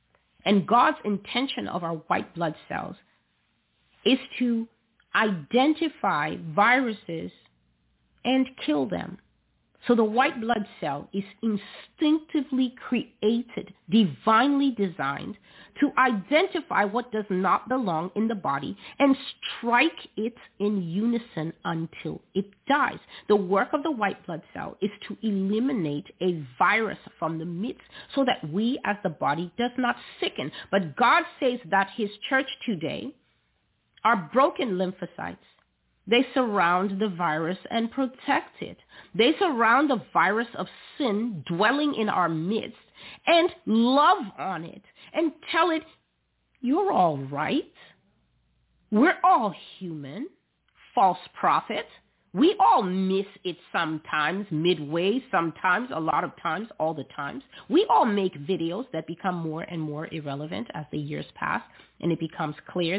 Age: 40-59